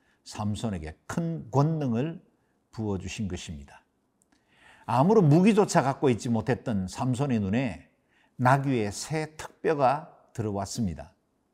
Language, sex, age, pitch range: Korean, male, 50-69, 100-155 Hz